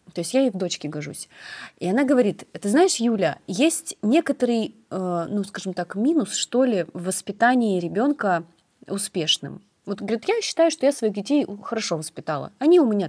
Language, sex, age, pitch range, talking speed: Russian, female, 30-49, 175-255 Hz, 175 wpm